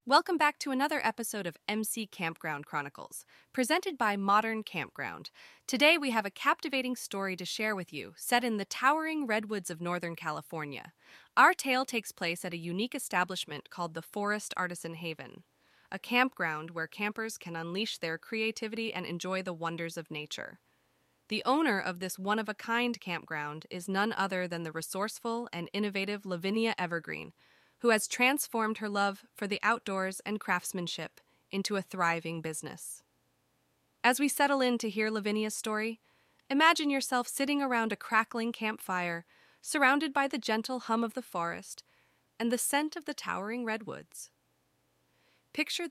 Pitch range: 180-255 Hz